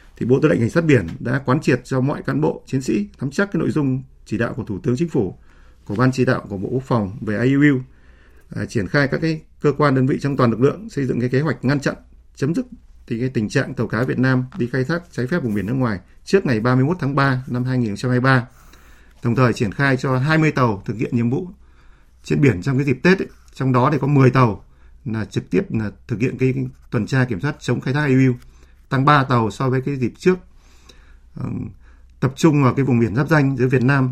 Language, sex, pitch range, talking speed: Vietnamese, male, 110-140 Hz, 255 wpm